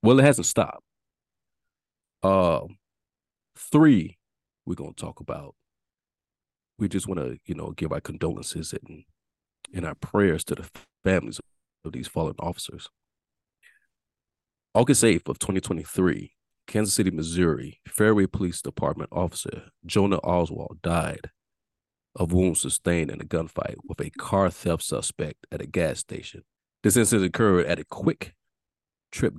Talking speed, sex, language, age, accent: 135 wpm, male, English, 40-59, American